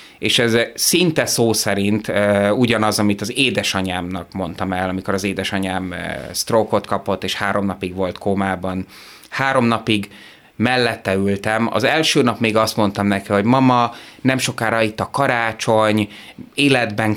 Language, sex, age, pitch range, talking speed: Hungarian, male, 30-49, 95-115 Hz, 140 wpm